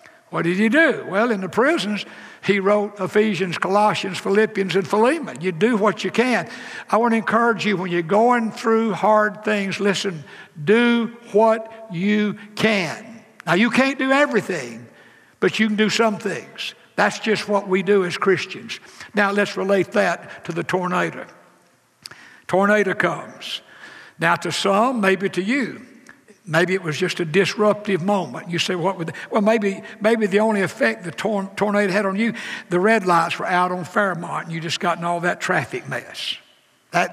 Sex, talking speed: male, 175 wpm